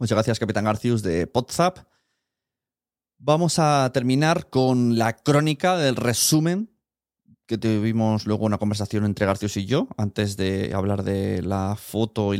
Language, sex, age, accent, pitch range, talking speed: Spanish, male, 20-39, Spanish, 105-135 Hz, 145 wpm